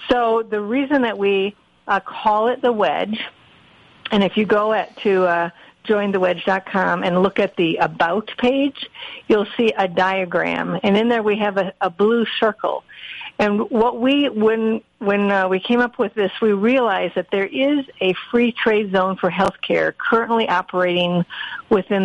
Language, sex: English, female